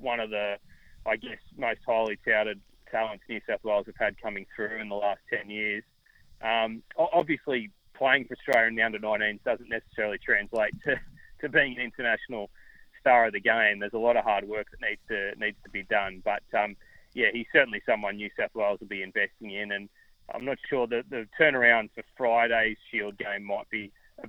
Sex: male